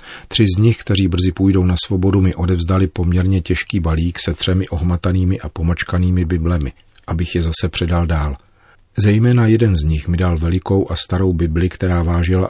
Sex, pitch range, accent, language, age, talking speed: male, 85-95 Hz, native, Czech, 40-59, 175 wpm